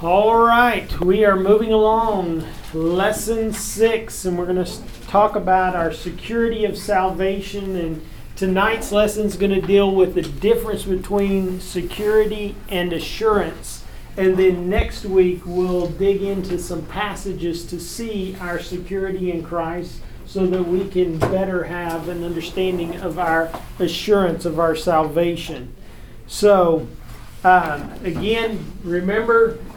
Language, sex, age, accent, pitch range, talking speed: English, male, 40-59, American, 175-200 Hz, 130 wpm